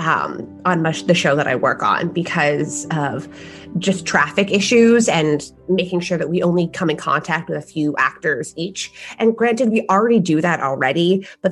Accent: American